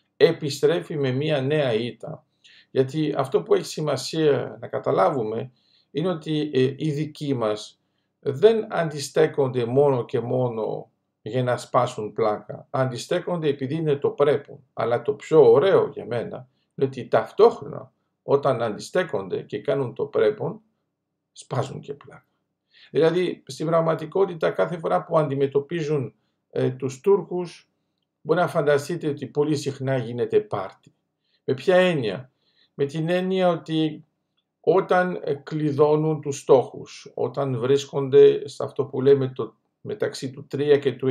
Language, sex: Greek, male